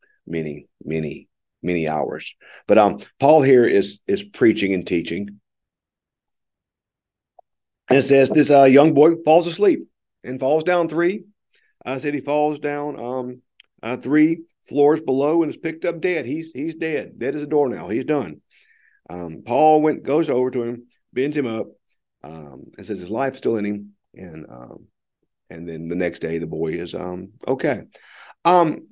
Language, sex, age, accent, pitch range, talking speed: English, male, 50-69, American, 95-145 Hz, 170 wpm